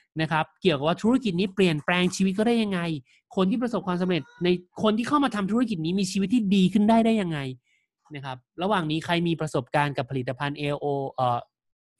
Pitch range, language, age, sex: 140-185 Hz, Thai, 20-39, male